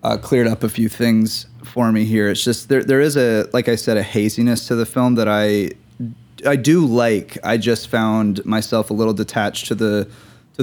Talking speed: 215 wpm